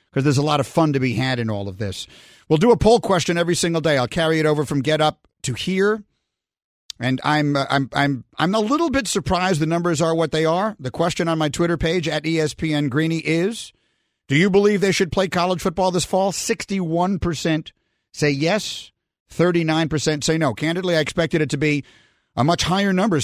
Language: English